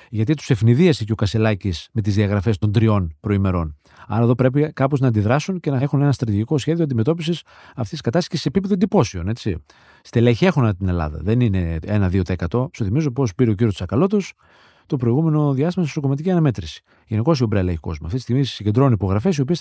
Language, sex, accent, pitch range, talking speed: Greek, male, native, 105-155 Hz, 195 wpm